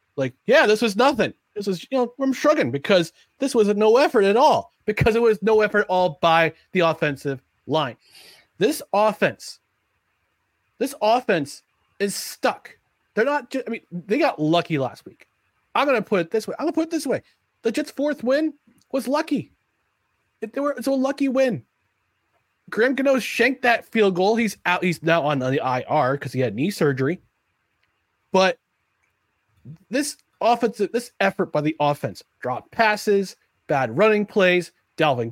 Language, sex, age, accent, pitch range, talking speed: English, male, 30-49, American, 140-230 Hz, 175 wpm